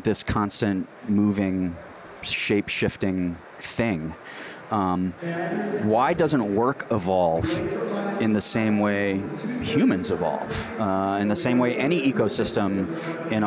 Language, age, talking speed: English, 30-49, 105 wpm